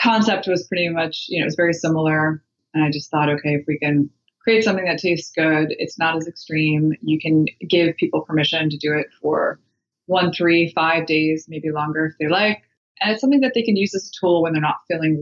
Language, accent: English, American